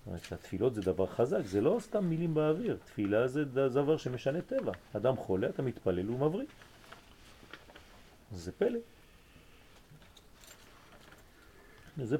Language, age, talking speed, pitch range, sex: French, 40-59, 110 wpm, 95-130 Hz, male